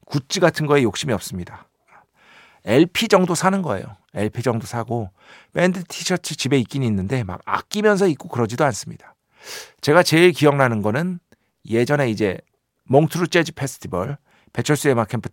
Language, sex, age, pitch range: Korean, male, 50-69, 115-170 Hz